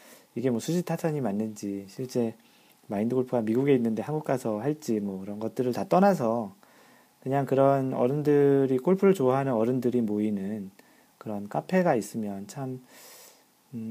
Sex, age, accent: male, 40-59, native